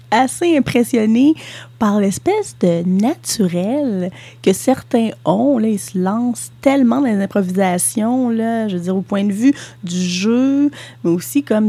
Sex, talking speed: female, 155 wpm